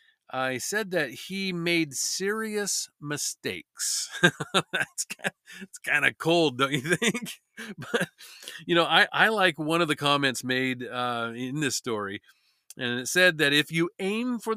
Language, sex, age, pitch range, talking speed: English, male, 40-59, 130-180 Hz, 165 wpm